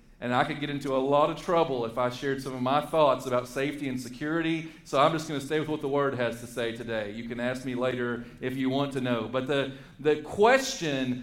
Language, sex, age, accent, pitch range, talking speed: English, male, 40-59, American, 140-205 Hz, 255 wpm